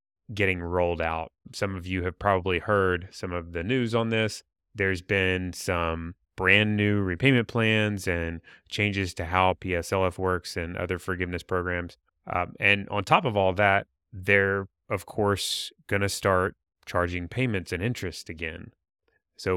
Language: English